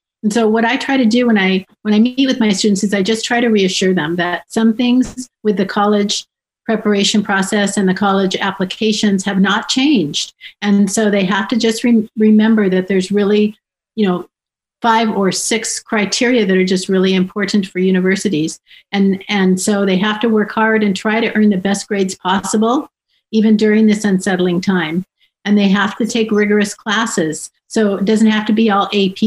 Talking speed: 200 wpm